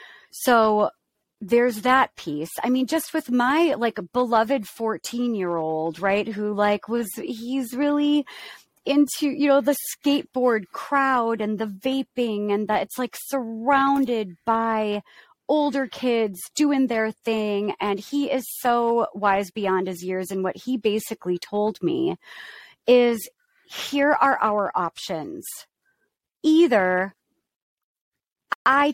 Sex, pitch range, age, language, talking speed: female, 195-265 Hz, 30-49, English, 125 wpm